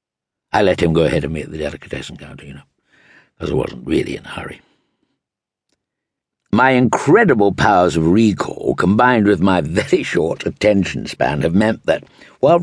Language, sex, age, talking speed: English, male, 60-79, 165 wpm